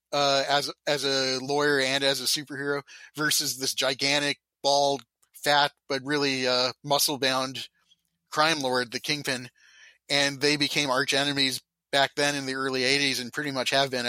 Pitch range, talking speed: 135-150 Hz, 165 wpm